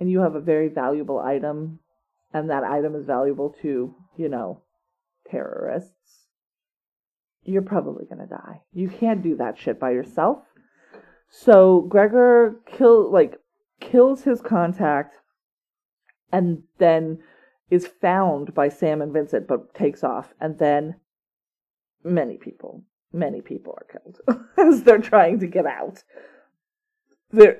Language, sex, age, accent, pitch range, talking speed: English, female, 40-59, American, 165-235 Hz, 135 wpm